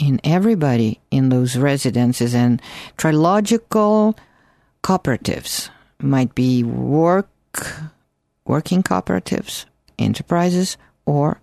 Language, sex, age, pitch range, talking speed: English, female, 50-69, 130-175 Hz, 80 wpm